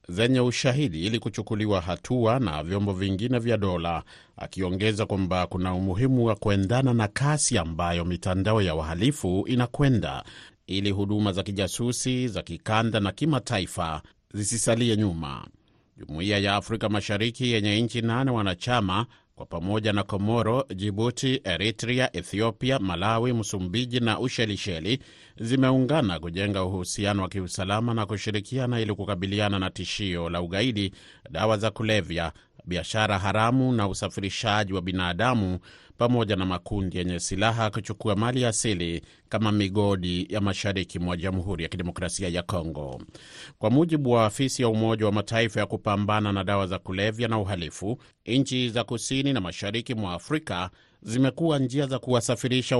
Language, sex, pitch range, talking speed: Swahili, male, 95-120 Hz, 135 wpm